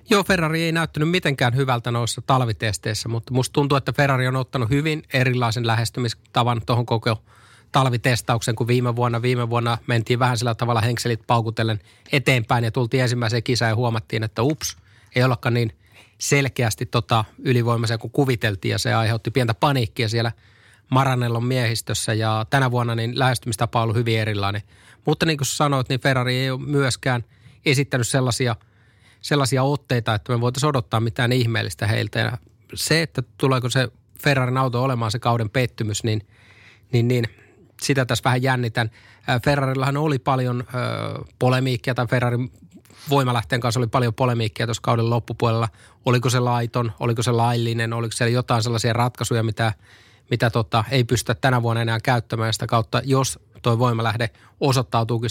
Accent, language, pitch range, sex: native, Finnish, 115-130 Hz, male